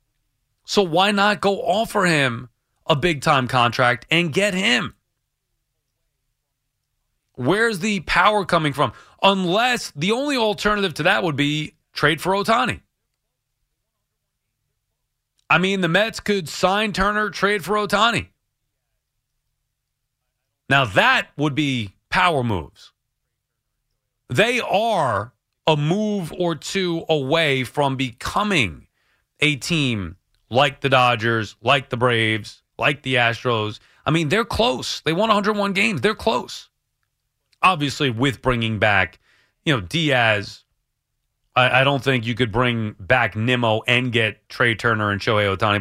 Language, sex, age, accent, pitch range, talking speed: English, male, 30-49, American, 120-170 Hz, 125 wpm